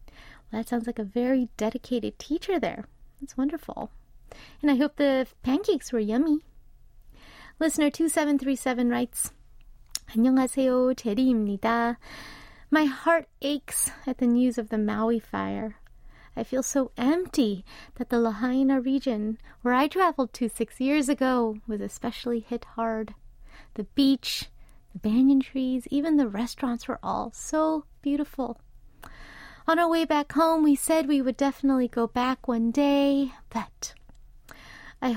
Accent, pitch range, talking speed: American, 230-285 Hz, 135 wpm